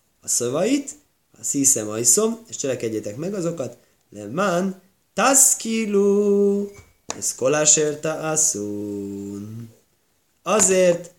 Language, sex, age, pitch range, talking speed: Hungarian, male, 20-39, 120-185 Hz, 85 wpm